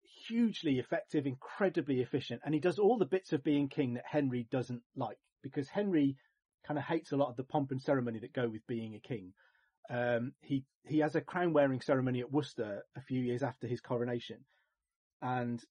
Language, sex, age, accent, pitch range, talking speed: English, male, 30-49, British, 120-150 Hz, 200 wpm